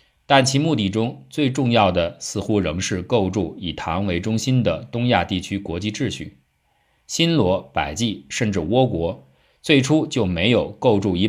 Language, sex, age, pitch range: Chinese, male, 50-69, 85-120 Hz